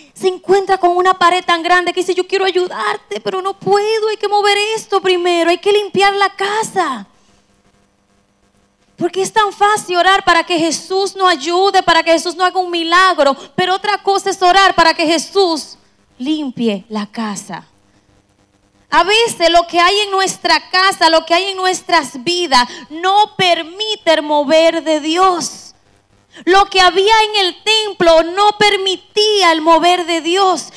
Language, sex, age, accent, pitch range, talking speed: Spanish, female, 20-39, American, 280-380 Hz, 165 wpm